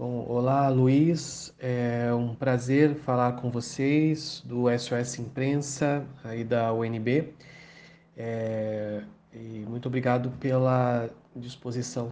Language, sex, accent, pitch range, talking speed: Portuguese, male, Brazilian, 120-140 Hz, 105 wpm